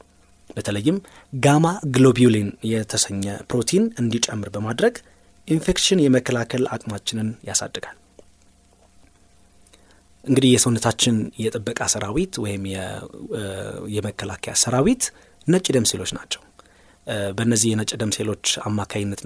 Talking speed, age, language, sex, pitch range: 85 wpm, 30-49, Amharic, male, 100-130 Hz